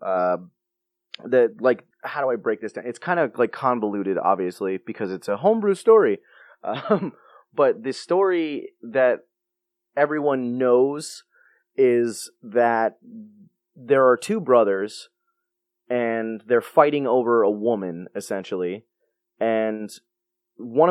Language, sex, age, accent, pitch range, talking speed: English, male, 20-39, American, 115-145 Hz, 120 wpm